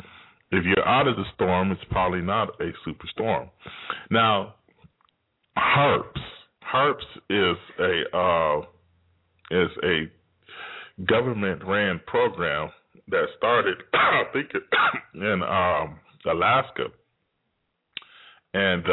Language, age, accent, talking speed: English, 30-49, American, 100 wpm